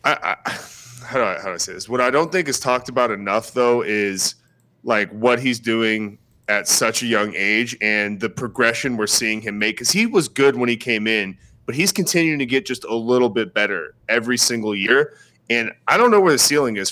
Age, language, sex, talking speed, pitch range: 20-39, English, male, 230 wpm, 115-130 Hz